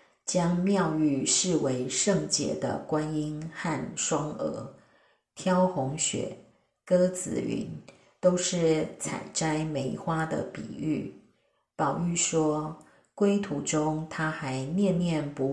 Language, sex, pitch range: Chinese, female, 145-180 Hz